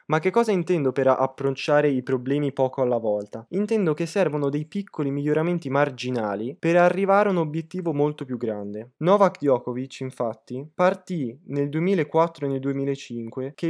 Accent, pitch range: native, 135-175 Hz